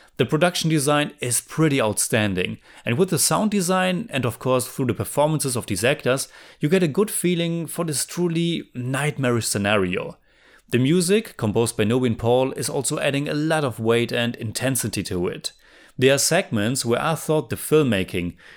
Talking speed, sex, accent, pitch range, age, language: 180 wpm, male, German, 115-155 Hz, 30-49, English